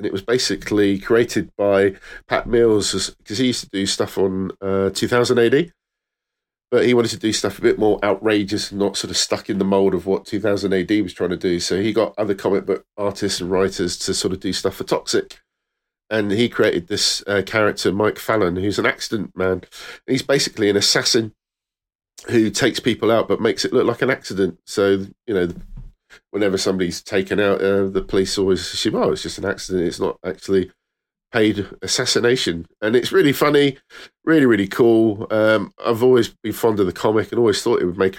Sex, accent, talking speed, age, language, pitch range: male, British, 205 wpm, 40-59, English, 95-115 Hz